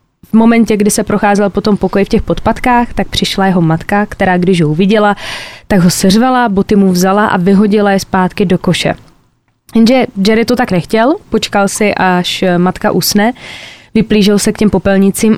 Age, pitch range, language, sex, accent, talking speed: 20-39, 190-215 Hz, Czech, female, native, 175 wpm